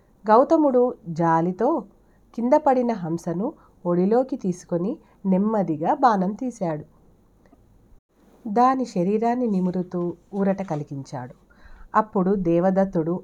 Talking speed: 75 wpm